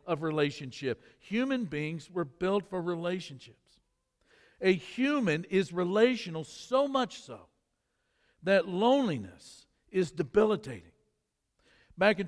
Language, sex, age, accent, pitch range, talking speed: English, male, 60-79, American, 155-200 Hz, 105 wpm